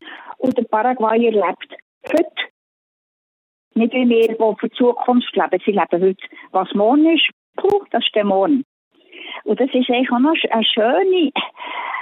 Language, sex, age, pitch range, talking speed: German, female, 50-69, 215-270 Hz, 160 wpm